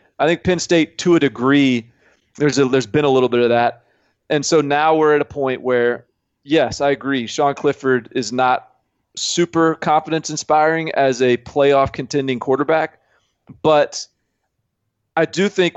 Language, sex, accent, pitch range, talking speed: English, male, American, 120-140 Hz, 155 wpm